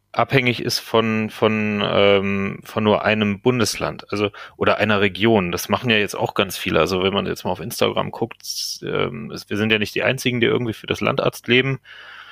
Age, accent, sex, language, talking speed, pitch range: 30-49, German, male, German, 185 wpm, 105-125 Hz